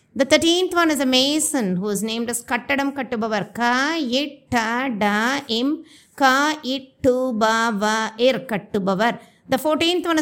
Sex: female